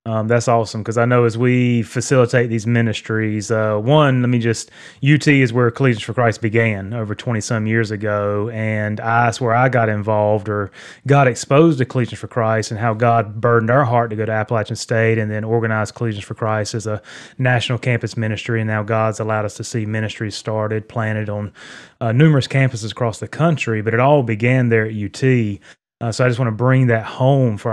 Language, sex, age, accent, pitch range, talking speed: English, male, 30-49, American, 110-125 Hz, 210 wpm